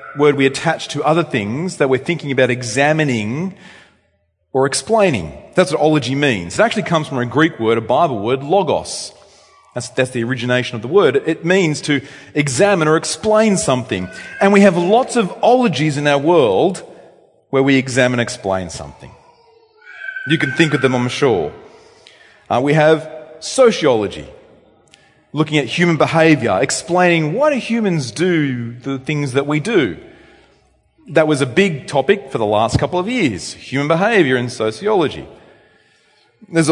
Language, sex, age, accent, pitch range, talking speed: English, male, 30-49, Australian, 125-170 Hz, 160 wpm